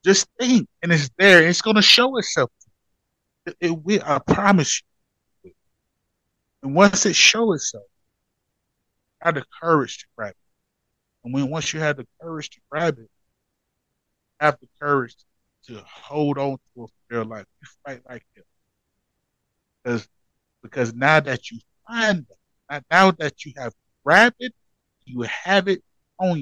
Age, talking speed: 30-49, 155 wpm